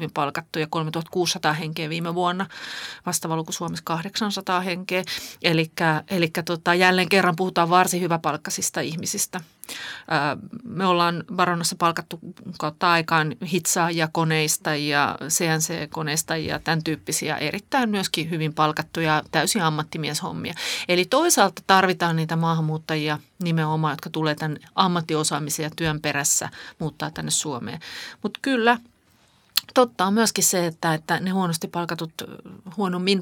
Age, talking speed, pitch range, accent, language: 30-49, 115 wpm, 155-185 Hz, native, Finnish